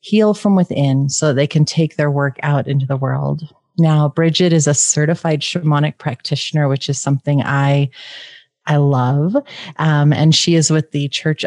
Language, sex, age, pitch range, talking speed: English, female, 30-49, 145-180 Hz, 175 wpm